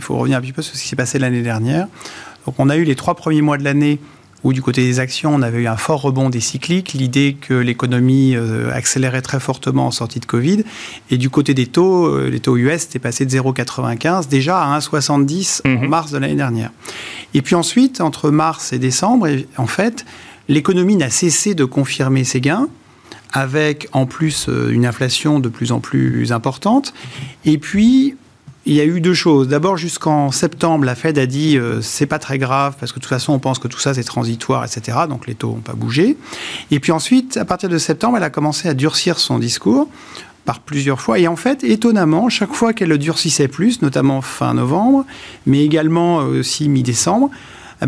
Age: 40-59